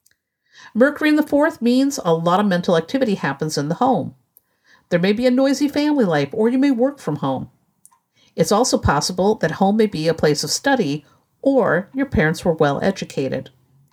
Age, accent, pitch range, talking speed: 50-69, American, 170-255 Hz, 185 wpm